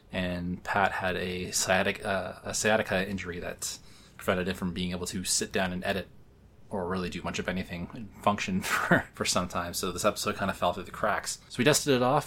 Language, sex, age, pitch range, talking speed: English, male, 20-39, 90-110 Hz, 225 wpm